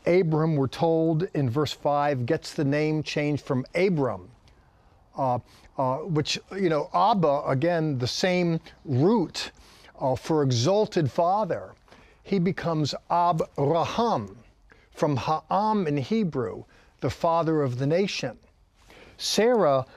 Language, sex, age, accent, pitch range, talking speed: English, male, 50-69, American, 145-190 Hz, 115 wpm